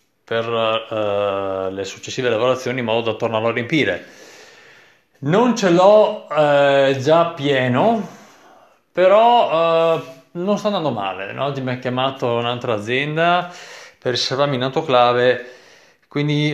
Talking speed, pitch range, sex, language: 125 wpm, 105-140 Hz, male, Italian